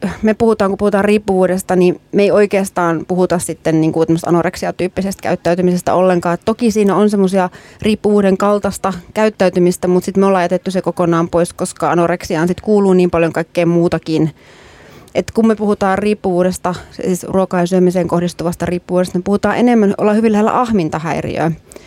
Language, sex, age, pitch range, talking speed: Finnish, female, 30-49, 175-205 Hz, 150 wpm